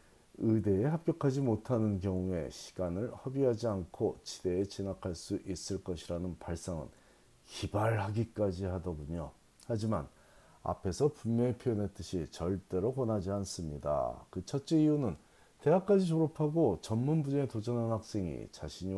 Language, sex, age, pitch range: Korean, male, 40-59, 95-130 Hz